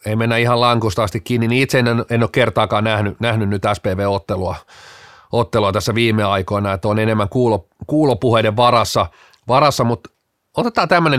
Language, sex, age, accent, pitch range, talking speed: Finnish, male, 40-59, native, 105-140 Hz, 135 wpm